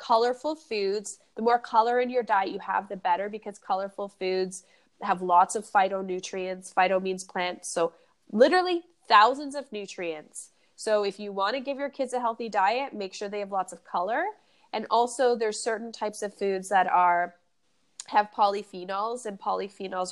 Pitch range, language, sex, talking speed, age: 185-230 Hz, English, female, 175 wpm, 20-39